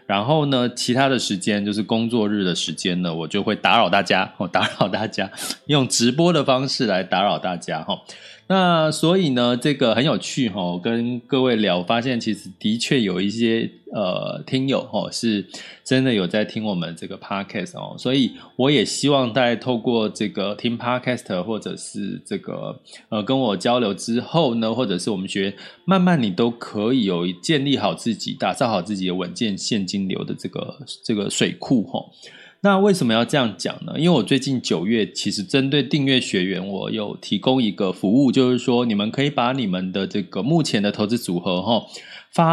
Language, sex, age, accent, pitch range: Chinese, male, 20-39, native, 105-145 Hz